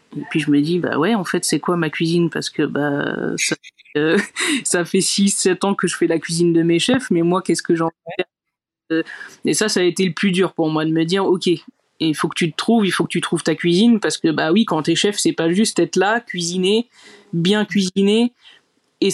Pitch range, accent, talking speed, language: 155-185 Hz, French, 250 wpm, French